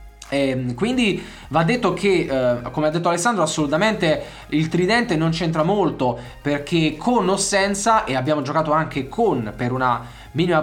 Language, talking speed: Italian, 155 wpm